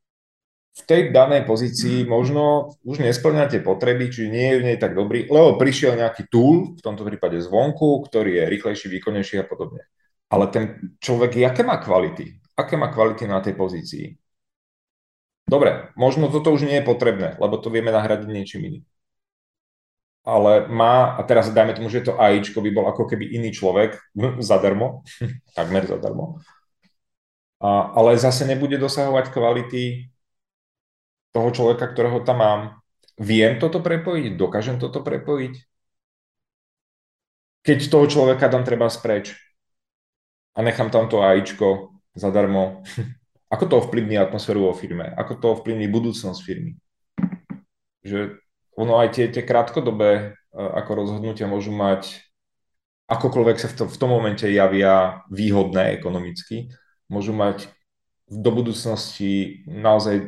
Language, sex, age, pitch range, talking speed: Czech, male, 30-49, 105-130 Hz, 135 wpm